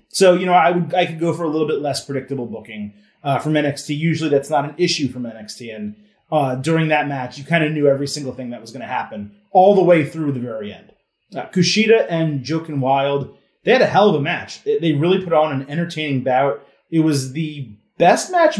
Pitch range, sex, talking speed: 135-165 Hz, male, 235 wpm